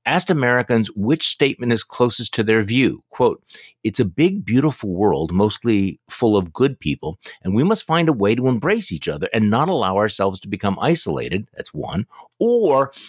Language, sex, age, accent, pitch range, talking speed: English, male, 50-69, American, 110-155 Hz, 185 wpm